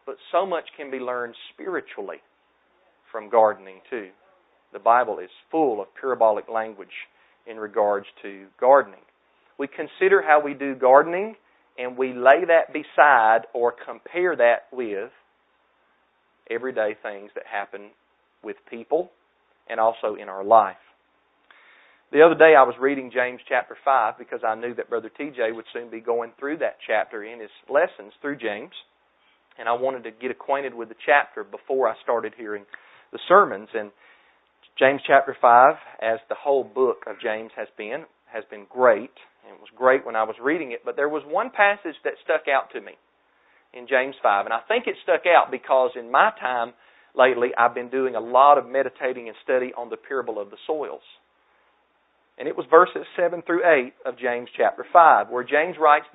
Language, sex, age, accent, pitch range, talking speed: English, male, 40-59, American, 115-155 Hz, 175 wpm